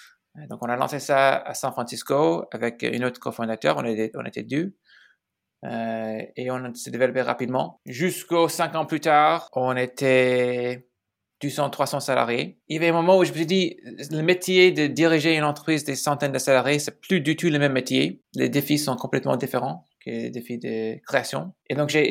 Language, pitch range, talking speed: French, 120-150 Hz, 200 wpm